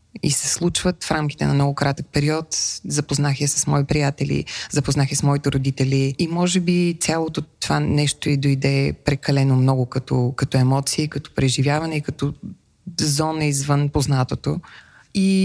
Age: 20-39